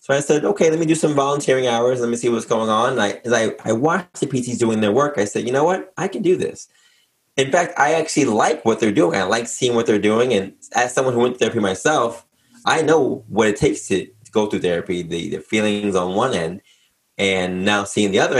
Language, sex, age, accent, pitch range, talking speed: English, male, 20-39, American, 95-120 Hz, 260 wpm